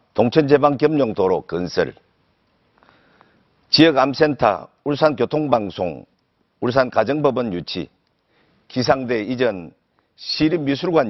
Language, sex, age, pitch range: Korean, male, 50-69, 120-170 Hz